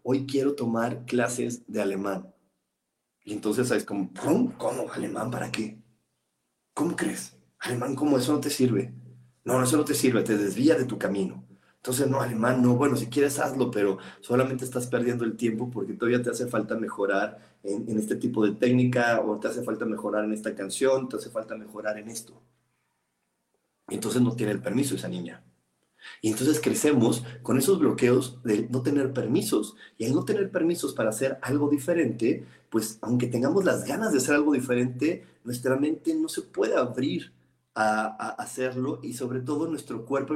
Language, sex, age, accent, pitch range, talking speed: Spanish, male, 40-59, Mexican, 105-130 Hz, 185 wpm